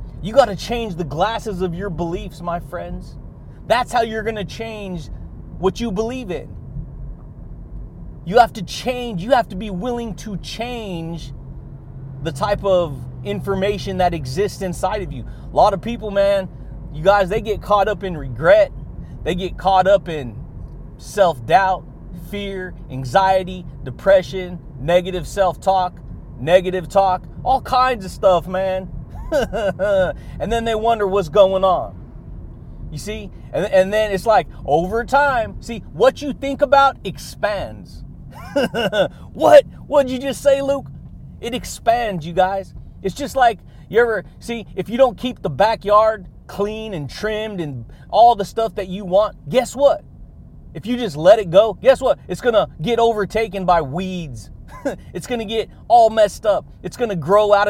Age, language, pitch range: 30-49, English, 170-225 Hz